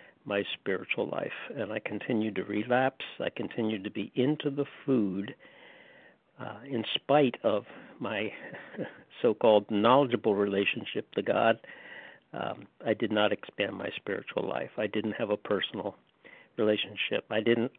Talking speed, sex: 140 wpm, male